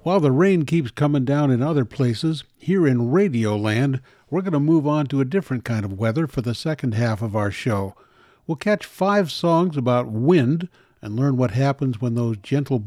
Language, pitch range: English, 120-170 Hz